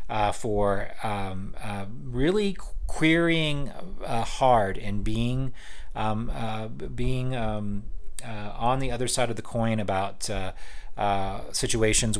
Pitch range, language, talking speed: 100-130 Hz, English, 130 wpm